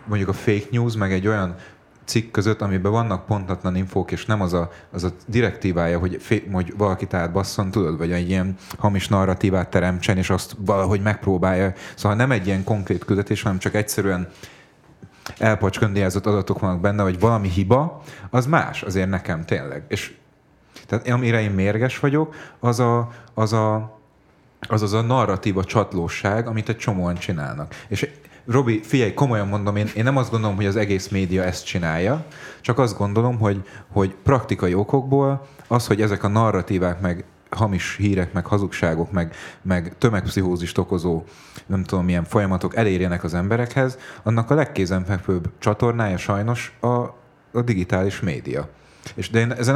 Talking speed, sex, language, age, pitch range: 160 wpm, male, Hungarian, 30-49, 95-115 Hz